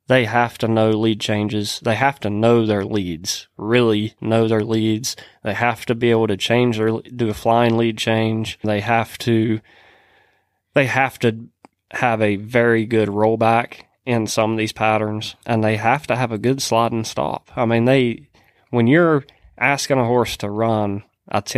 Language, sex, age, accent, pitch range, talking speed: English, male, 20-39, American, 105-125 Hz, 185 wpm